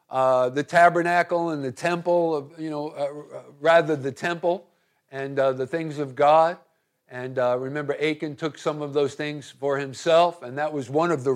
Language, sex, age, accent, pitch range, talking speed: English, male, 50-69, American, 150-190 Hz, 185 wpm